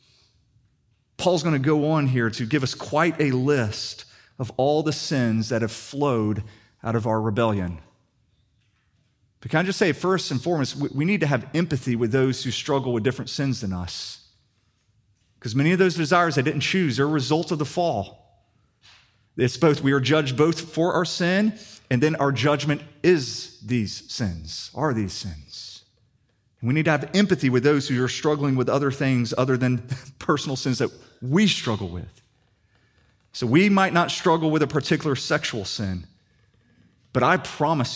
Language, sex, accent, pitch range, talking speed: English, male, American, 110-150 Hz, 175 wpm